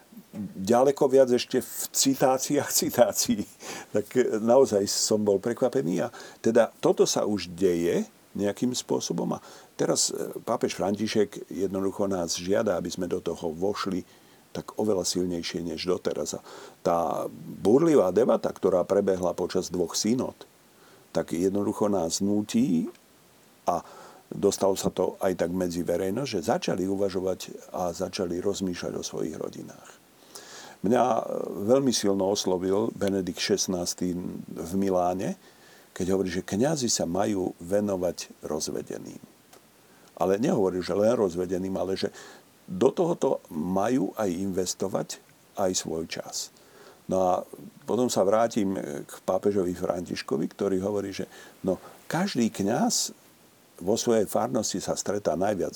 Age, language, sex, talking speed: 50-69, Slovak, male, 125 wpm